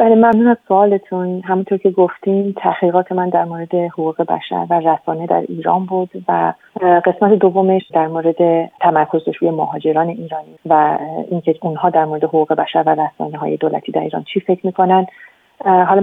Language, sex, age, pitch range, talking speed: Persian, female, 30-49, 170-200 Hz, 160 wpm